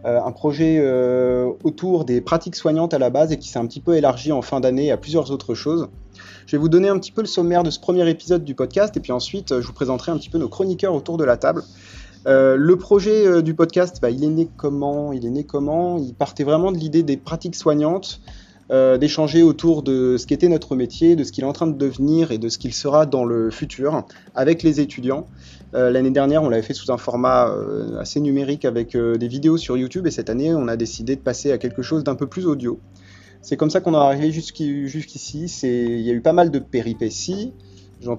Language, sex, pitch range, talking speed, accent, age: French, male, 125-160 Hz, 235 wpm, French, 30-49